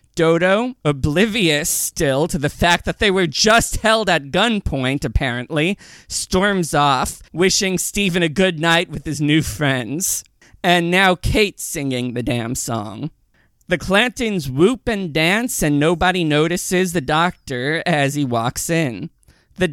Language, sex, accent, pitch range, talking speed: English, male, American, 145-190 Hz, 145 wpm